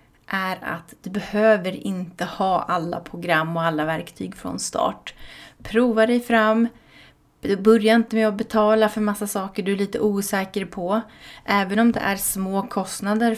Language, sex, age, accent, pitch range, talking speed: Swedish, female, 30-49, native, 185-220 Hz, 160 wpm